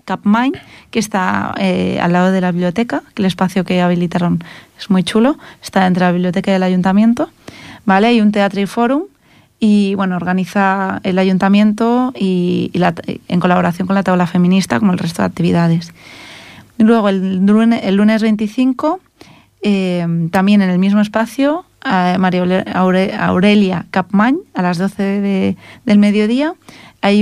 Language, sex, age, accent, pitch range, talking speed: Spanish, female, 30-49, Spanish, 185-215 Hz, 150 wpm